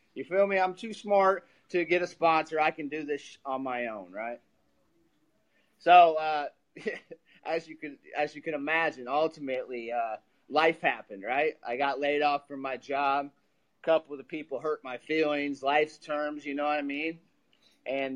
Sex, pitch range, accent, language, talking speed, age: male, 140-170 Hz, American, English, 175 wpm, 30-49